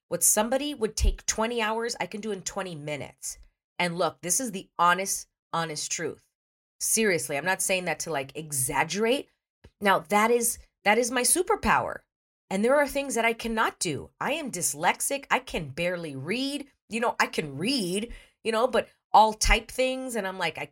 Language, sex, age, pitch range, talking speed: English, female, 40-59, 155-235 Hz, 190 wpm